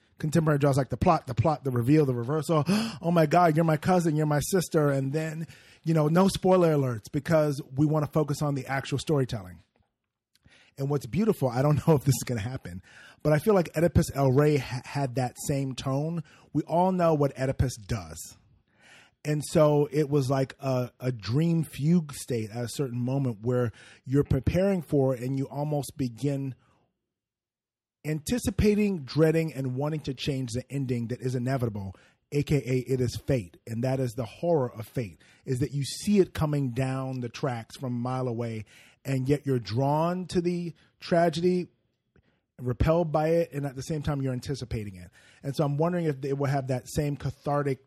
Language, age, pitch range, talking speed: English, 30-49, 125-155 Hz, 190 wpm